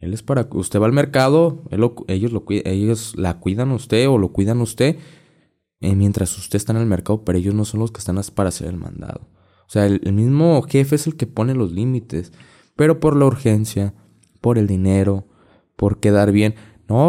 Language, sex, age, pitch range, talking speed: Spanish, male, 20-39, 100-120 Hz, 220 wpm